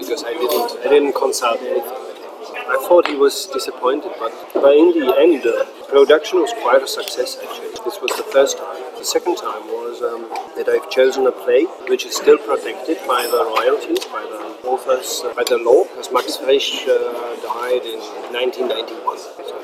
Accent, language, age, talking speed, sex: German, English, 40-59, 175 wpm, male